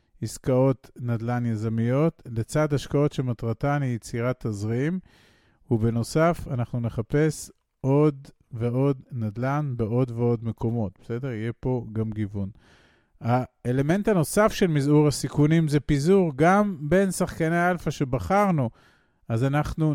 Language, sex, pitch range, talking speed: Hebrew, male, 120-160 Hz, 110 wpm